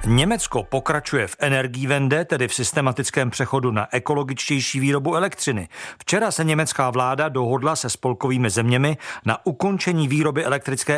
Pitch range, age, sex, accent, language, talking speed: 130-165 Hz, 50-69, male, native, Czech, 135 wpm